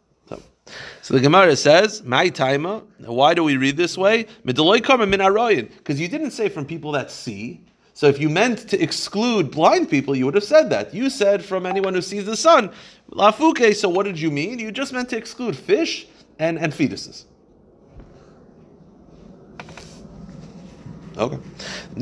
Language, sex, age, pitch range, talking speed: English, male, 40-59, 145-210 Hz, 145 wpm